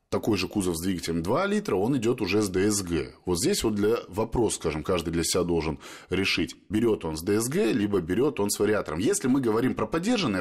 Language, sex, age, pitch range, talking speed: Russian, male, 20-39, 90-125 Hz, 215 wpm